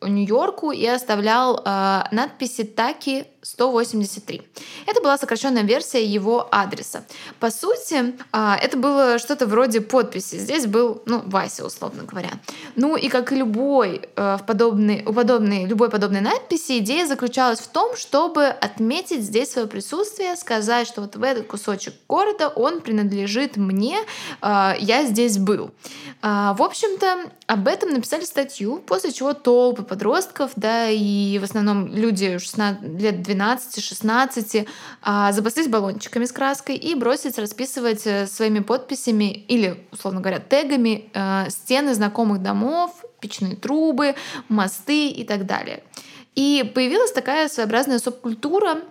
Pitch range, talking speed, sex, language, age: 210-275 Hz, 130 wpm, female, Russian, 20-39